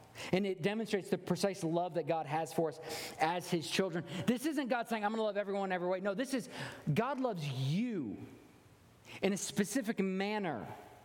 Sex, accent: male, American